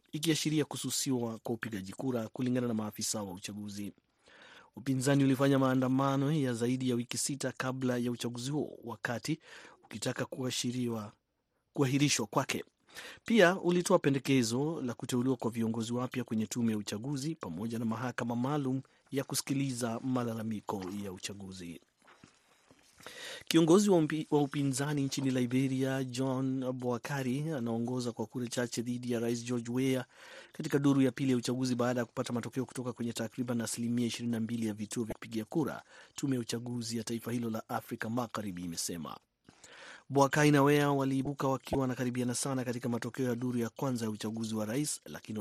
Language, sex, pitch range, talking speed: Swahili, male, 115-135 Hz, 150 wpm